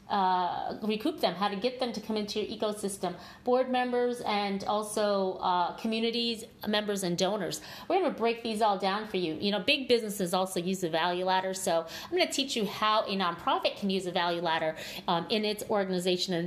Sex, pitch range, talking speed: female, 180-230 Hz, 210 wpm